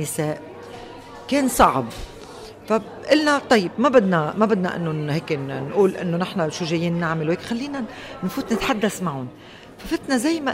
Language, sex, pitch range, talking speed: Arabic, female, 170-235 Hz, 140 wpm